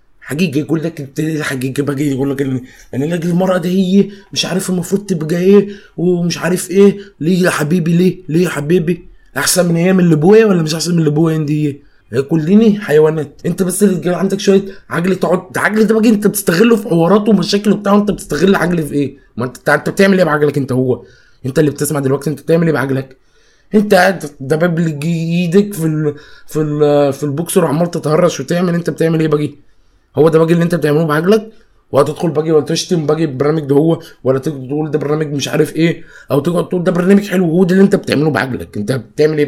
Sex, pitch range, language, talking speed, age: male, 150-185 Hz, Arabic, 200 wpm, 20-39